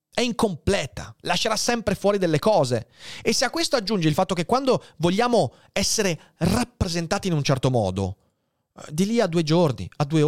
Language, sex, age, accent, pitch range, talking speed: Italian, male, 30-49, native, 125-190 Hz, 175 wpm